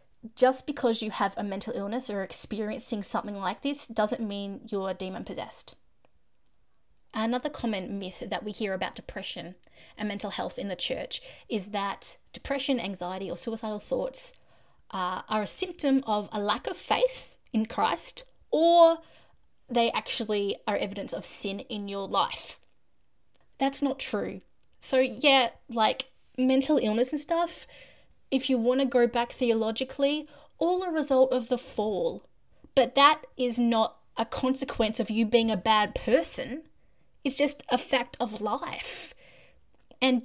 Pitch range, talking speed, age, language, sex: 210-265 Hz, 150 wpm, 20-39, English, female